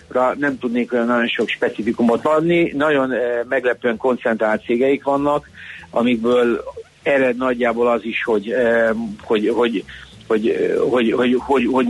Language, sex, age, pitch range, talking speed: Hungarian, male, 60-79, 110-125 Hz, 145 wpm